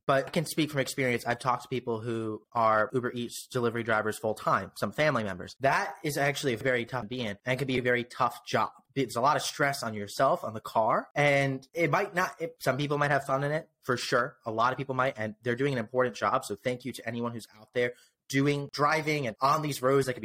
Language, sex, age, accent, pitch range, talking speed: English, male, 30-49, American, 120-155 Hz, 260 wpm